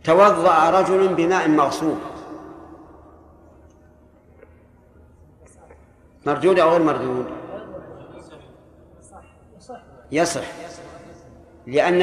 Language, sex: Arabic, male